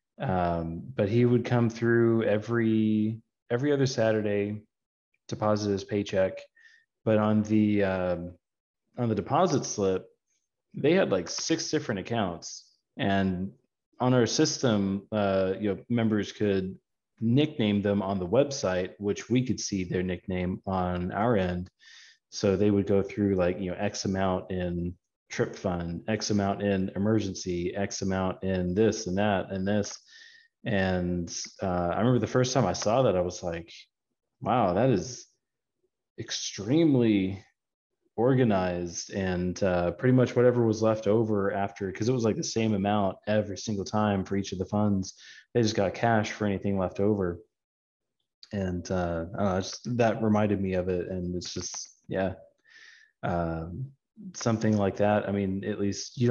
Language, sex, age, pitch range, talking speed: English, male, 30-49, 95-115 Hz, 155 wpm